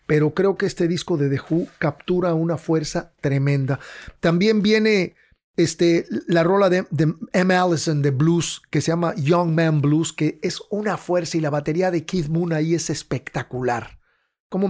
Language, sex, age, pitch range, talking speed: English, male, 40-59, 150-180 Hz, 170 wpm